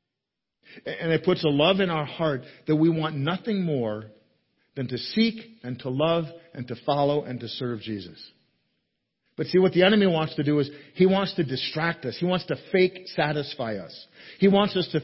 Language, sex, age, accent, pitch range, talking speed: English, male, 50-69, American, 125-165 Hz, 200 wpm